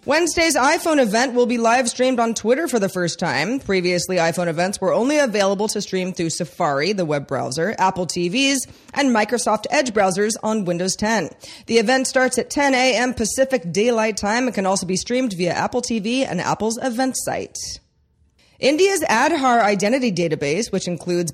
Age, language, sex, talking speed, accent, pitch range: 30-49, English, female, 170 wpm, American, 175-240 Hz